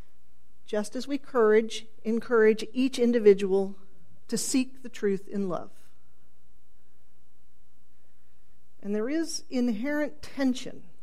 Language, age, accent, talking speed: English, 50-69, American, 100 wpm